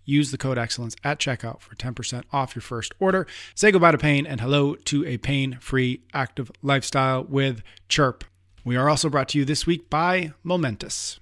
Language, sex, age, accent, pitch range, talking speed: English, male, 30-49, American, 125-150 Hz, 185 wpm